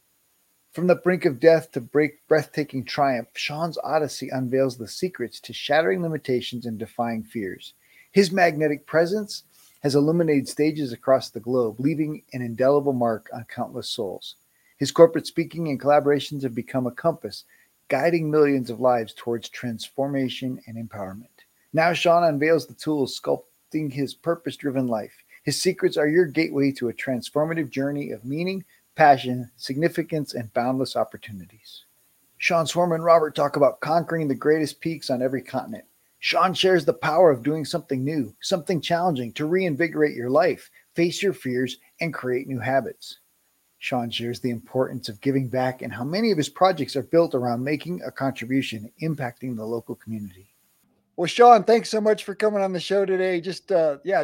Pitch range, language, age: 125-170 Hz, English, 40-59